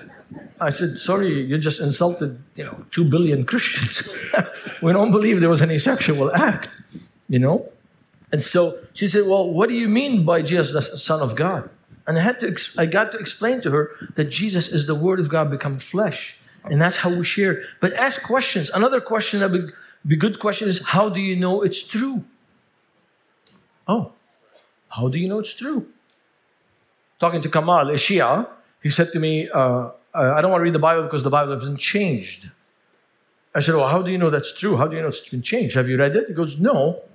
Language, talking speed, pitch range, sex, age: English, 210 wpm, 150-210 Hz, male, 60-79